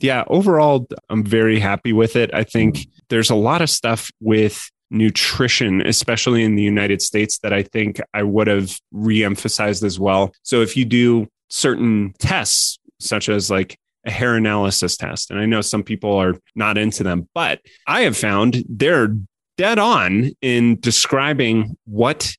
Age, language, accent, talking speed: 30-49, English, American, 165 wpm